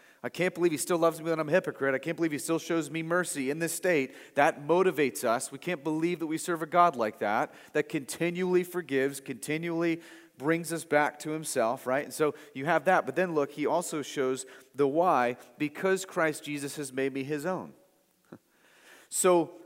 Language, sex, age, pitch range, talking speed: English, male, 30-49, 160-210 Hz, 205 wpm